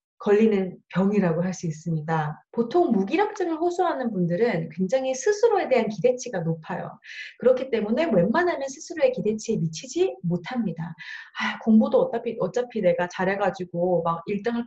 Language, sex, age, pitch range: Korean, female, 30-49, 190-315 Hz